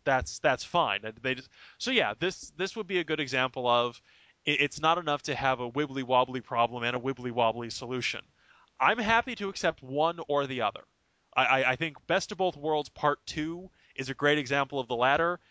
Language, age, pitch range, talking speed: English, 20-39, 125-155 Hz, 195 wpm